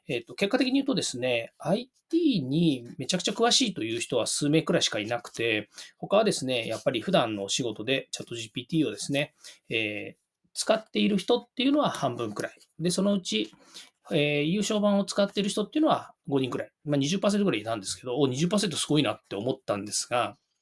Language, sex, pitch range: Japanese, male, 135-205 Hz